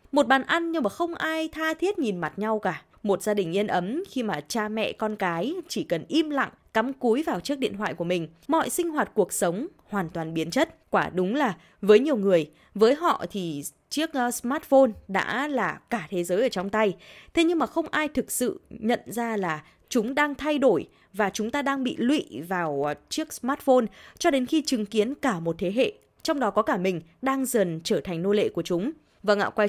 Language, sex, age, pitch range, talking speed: Vietnamese, female, 20-39, 195-270 Hz, 225 wpm